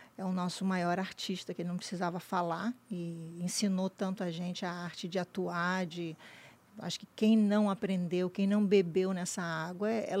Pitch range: 185-210 Hz